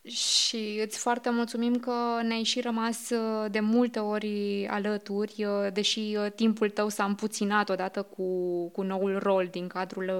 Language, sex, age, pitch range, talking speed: Romanian, female, 20-39, 195-235 Hz, 140 wpm